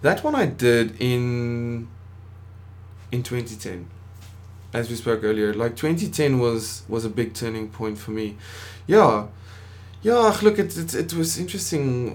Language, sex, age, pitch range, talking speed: English, male, 20-39, 95-130 Hz, 145 wpm